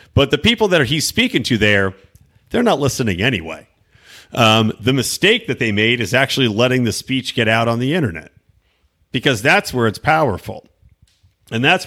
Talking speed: 175 wpm